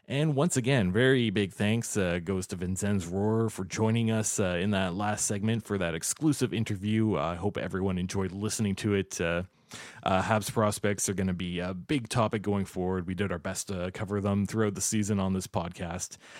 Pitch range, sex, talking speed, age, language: 95-115 Hz, male, 210 wpm, 20-39, English